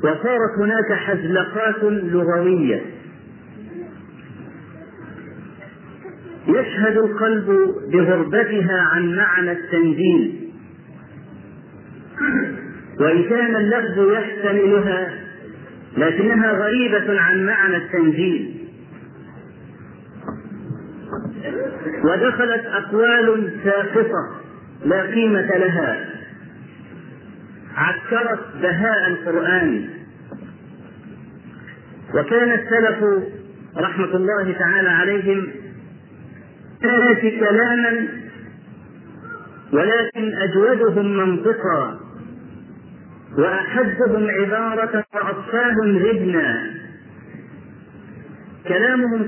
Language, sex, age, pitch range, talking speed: Arabic, male, 40-59, 185-225 Hz, 55 wpm